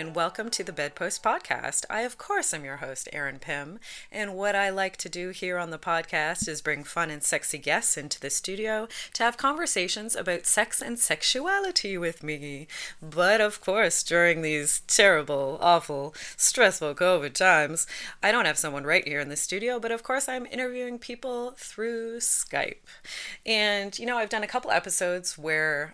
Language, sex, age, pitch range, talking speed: English, female, 30-49, 155-225 Hz, 180 wpm